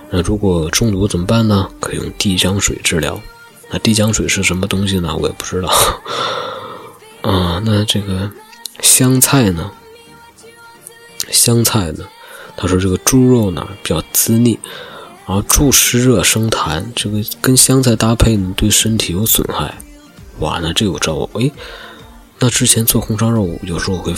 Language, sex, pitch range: Chinese, male, 95-115 Hz